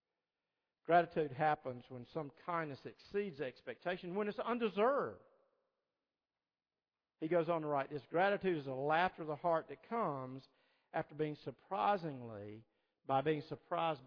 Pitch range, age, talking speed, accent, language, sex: 135-190 Hz, 50-69, 135 wpm, American, English, male